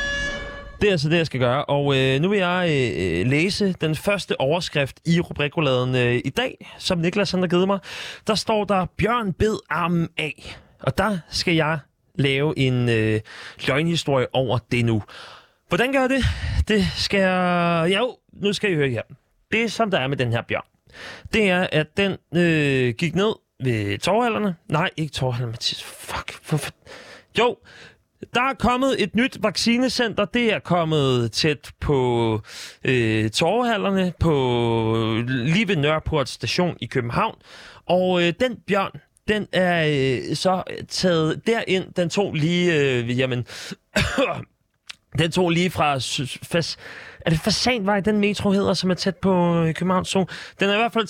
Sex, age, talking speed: male, 30-49, 160 wpm